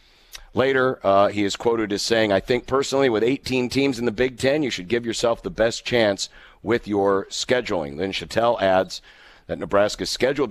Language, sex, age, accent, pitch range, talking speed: English, male, 50-69, American, 105-135 Hz, 195 wpm